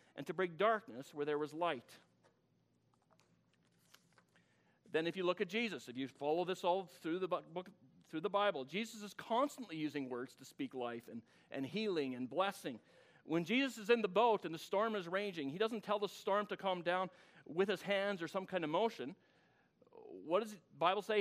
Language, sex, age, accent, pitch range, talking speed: English, male, 40-59, American, 160-210 Hz, 200 wpm